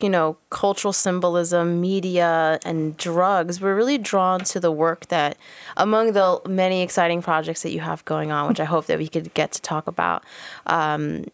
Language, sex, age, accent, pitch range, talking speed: English, female, 20-39, American, 160-190 Hz, 185 wpm